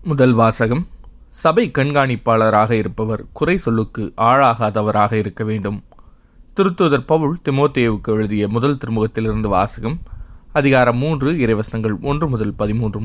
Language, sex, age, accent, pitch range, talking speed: Tamil, male, 20-39, native, 110-140 Hz, 105 wpm